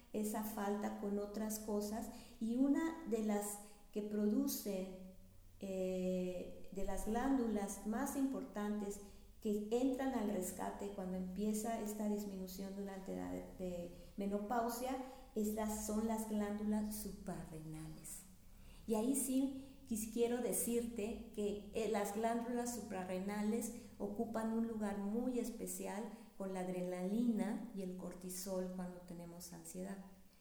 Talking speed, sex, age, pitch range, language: 110 wpm, female, 40-59, 190-230 Hz, Spanish